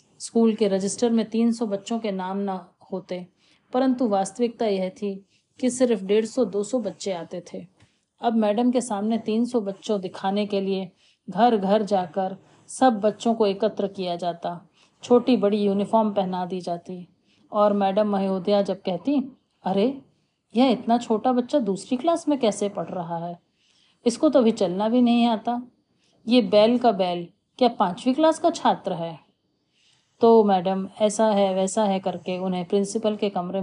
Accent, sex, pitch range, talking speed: native, female, 185-225 Hz, 170 wpm